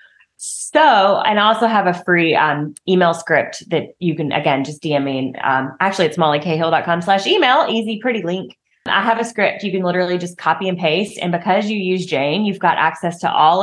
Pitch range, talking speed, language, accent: 165-210 Hz, 205 wpm, English, American